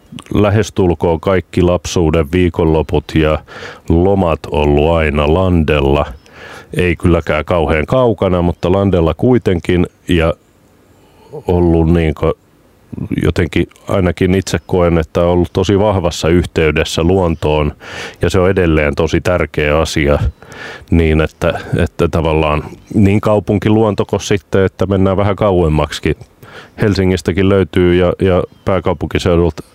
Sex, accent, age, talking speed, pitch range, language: male, native, 30-49, 105 wpm, 80-90 Hz, Finnish